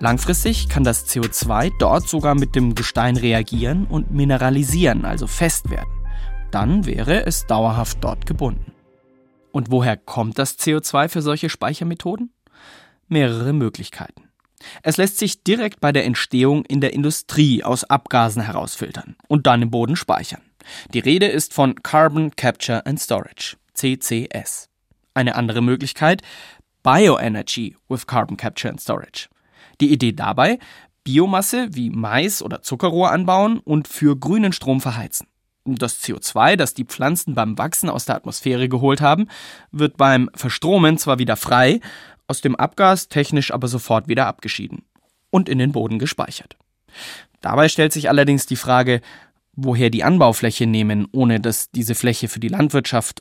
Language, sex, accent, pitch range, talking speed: German, male, German, 120-155 Hz, 145 wpm